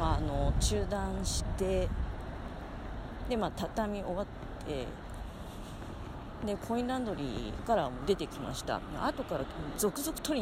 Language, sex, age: Japanese, female, 40-59